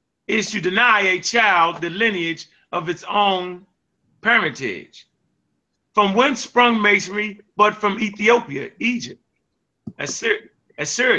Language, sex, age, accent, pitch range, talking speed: English, male, 30-49, American, 140-205 Hz, 105 wpm